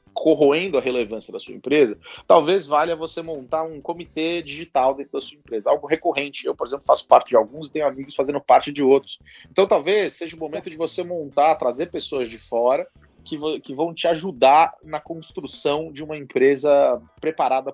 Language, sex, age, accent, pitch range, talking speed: Portuguese, male, 30-49, Brazilian, 140-185 Hz, 190 wpm